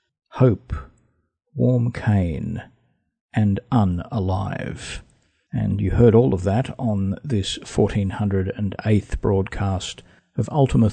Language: English